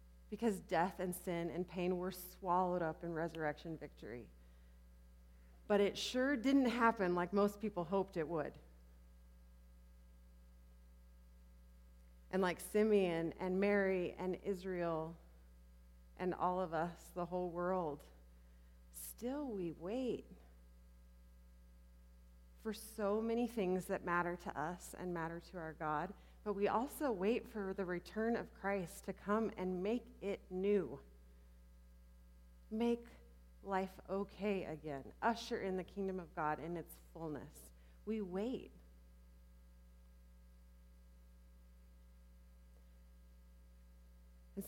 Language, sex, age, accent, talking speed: English, female, 30-49, American, 115 wpm